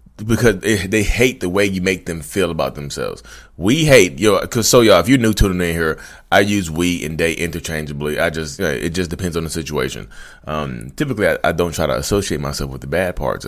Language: English